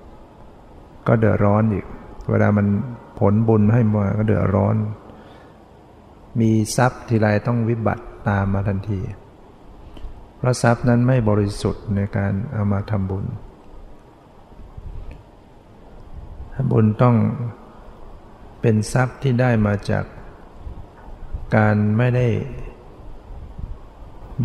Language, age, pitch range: Thai, 60-79, 100-110 Hz